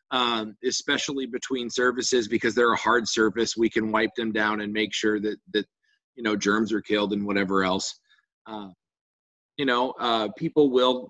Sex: male